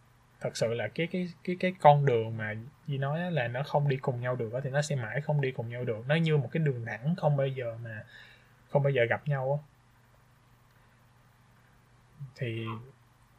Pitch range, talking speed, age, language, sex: 120-145 Hz, 200 wpm, 20-39, Vietnamese, male